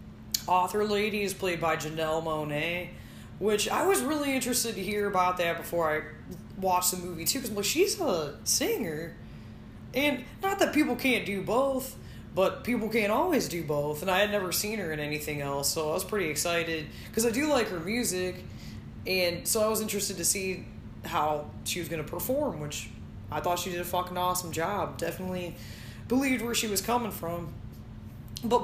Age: 20-39